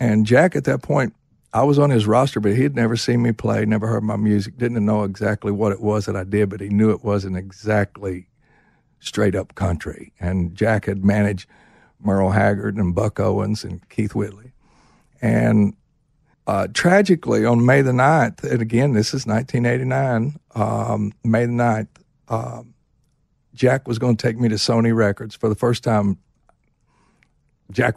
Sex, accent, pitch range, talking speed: male, American, 105-120 Hz, 175 wpm